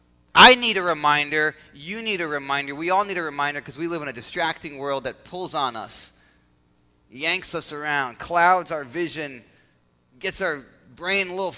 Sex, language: male, English